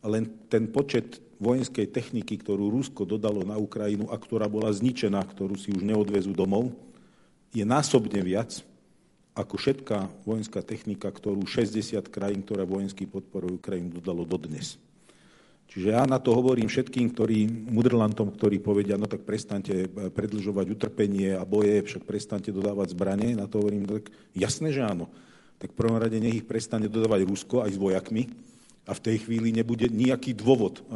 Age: 40-59